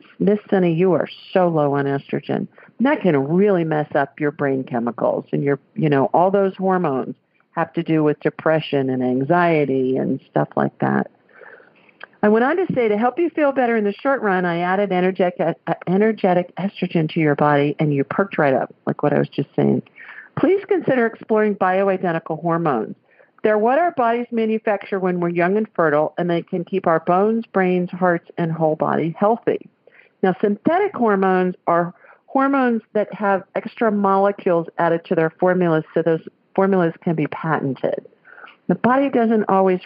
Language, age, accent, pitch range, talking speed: English, 50-69, American, 155-210 Hz, 175 wpm